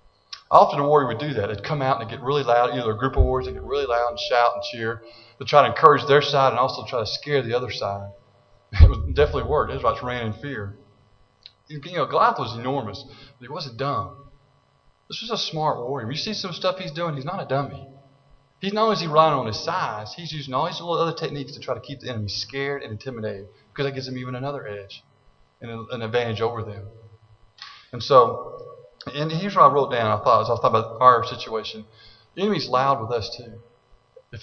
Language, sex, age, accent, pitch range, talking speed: English, male, 20-39, American, 115-160 Hz, 235 wpm